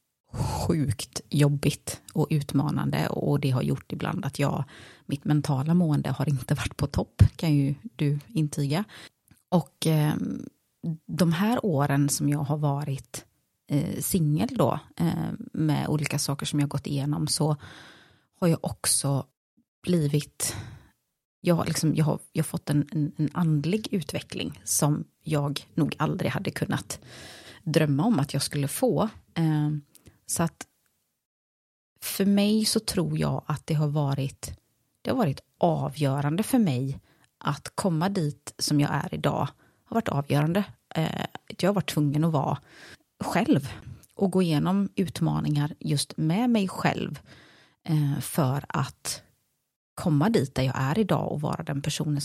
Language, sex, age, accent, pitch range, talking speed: Swedish, female, 30-49, native, 140-175 Hz, 145 wpm